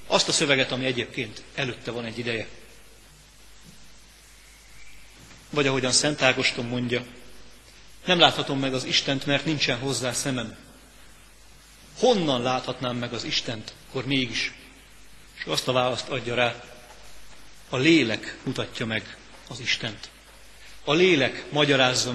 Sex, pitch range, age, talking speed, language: male, 120-140 Hz, 40-59, 120 wpm, Hungarian